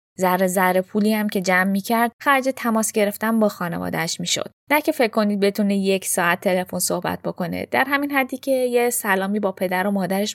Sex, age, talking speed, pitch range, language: female, 10-29, 205 wpm, 195-245 Hz, Persian